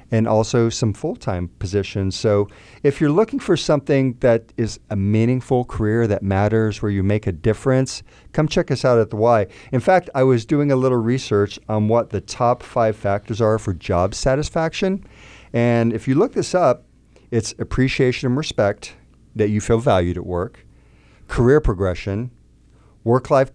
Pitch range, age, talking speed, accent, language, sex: 100-125 Hz, 50-69, 170 wpm, American, English, male